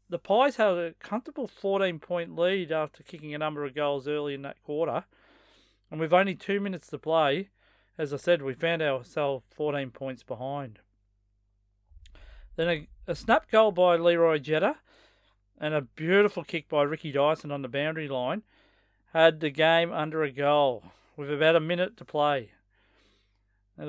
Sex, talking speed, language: male, 165 wpm, English